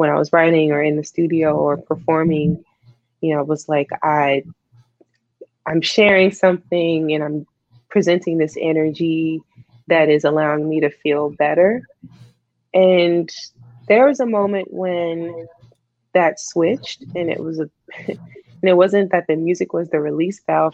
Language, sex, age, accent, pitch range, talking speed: English, female, 20-39, American, 145-170 Hz, 155 wpm